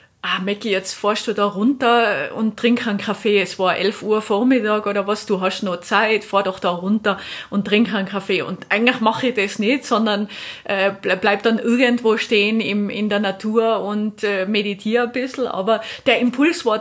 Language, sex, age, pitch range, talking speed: German, female, 30-49, 210-245 Hz, 195 wpm